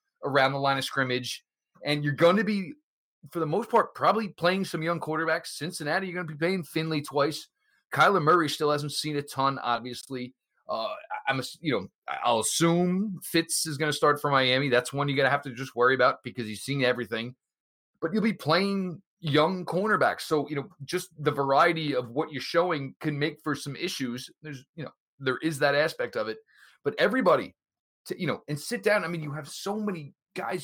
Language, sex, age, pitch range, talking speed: English, male, 30-49, 140-185 Hz, 210 wpm